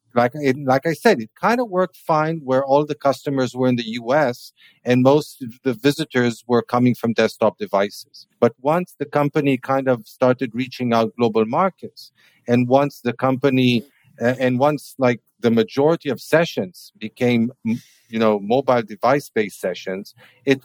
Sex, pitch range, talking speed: male, 120-150 Hz, 170 wpm